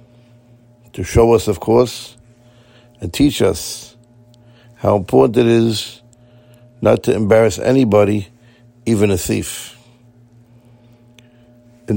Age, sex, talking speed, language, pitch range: 60-79, male, 100 wpm, English, 115-120 Hz